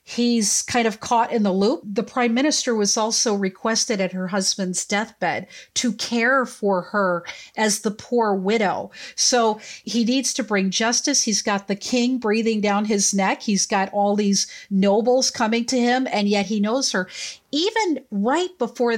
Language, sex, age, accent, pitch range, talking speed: English, female, 40-59, American, 210-270 Hz, 175 wpm